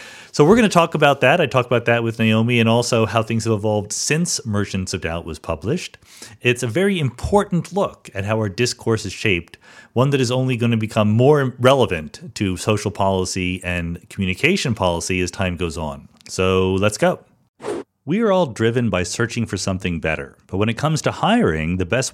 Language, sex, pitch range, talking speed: English, male, 95-140 Hz, 205 wpm